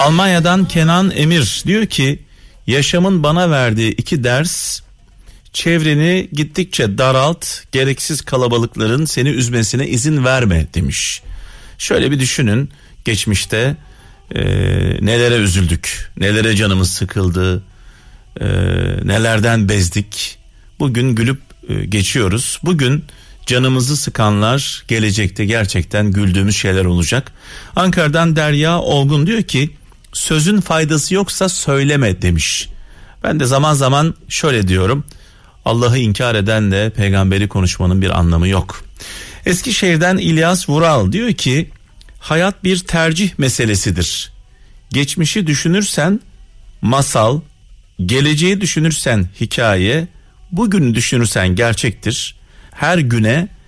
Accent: native